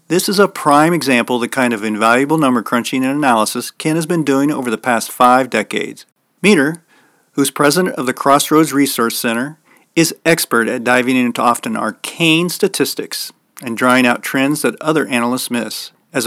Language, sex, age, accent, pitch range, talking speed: English, male, 40-59, American, 125-175 Hz, 175 wpm